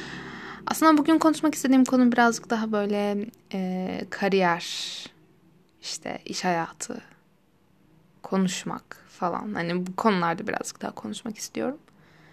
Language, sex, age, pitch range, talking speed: Turkish, female, 10-29, 195-230 Hz, 105 wpm